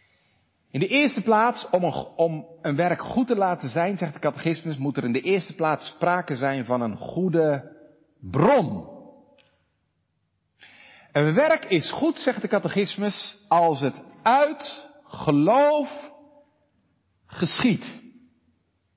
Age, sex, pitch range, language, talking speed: 50-69, male, 125-205 Hz, Dutch, 125 wpm